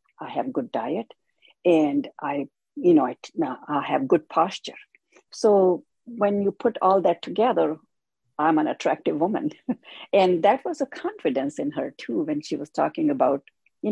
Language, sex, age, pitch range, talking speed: English, female, 50-69, 175-290 Hz, 175 wpm